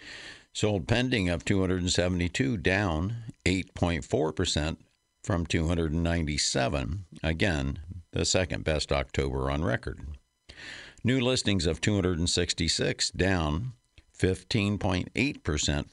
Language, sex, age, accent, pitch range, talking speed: English, male, 60-79, American, 75-95 Hz, 75 wpm